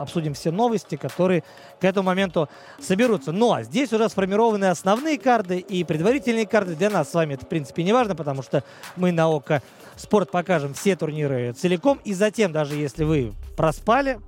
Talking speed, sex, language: 180 wpm, male, Russian